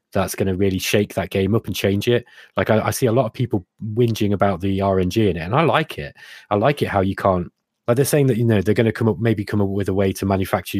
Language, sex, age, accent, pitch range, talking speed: English, male, 20-39, British, 95-125 Hz, 300 wpm